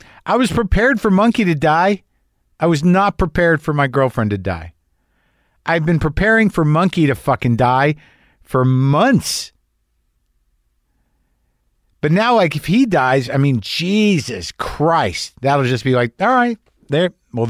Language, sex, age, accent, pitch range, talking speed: English, male, 50-69, American, 110-160 Hz, 150 wpm